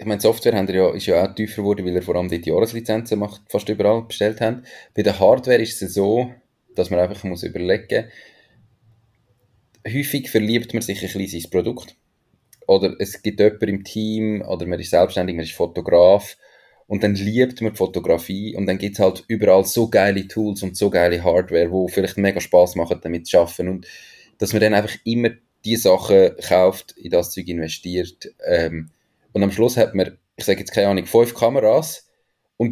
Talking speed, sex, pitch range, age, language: 195 wpm, male, 95-120 Hz, 30-49, German